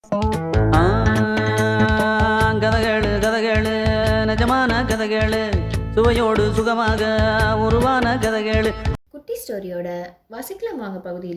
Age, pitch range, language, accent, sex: 20-39, 175-260 Hz, Tamil, native, female